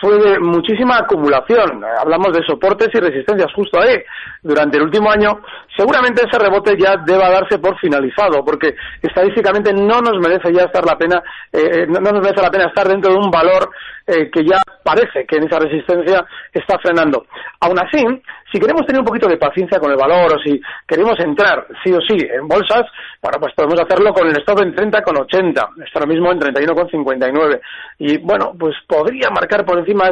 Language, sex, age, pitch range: Spanish, male, 40-59, 175-245 Hz